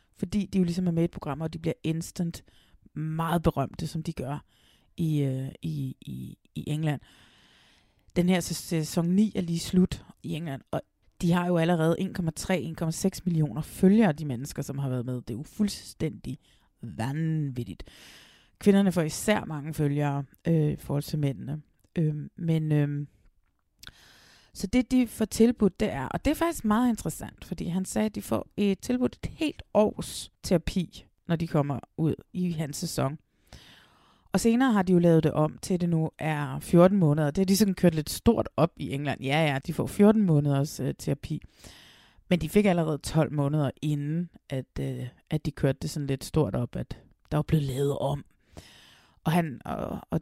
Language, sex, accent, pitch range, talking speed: Danish, female, native, 140-180 Hz, 190 wpm